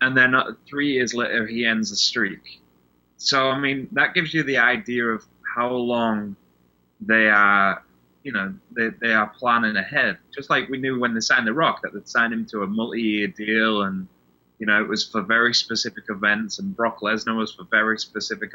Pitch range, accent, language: 100-130 Hz, British, English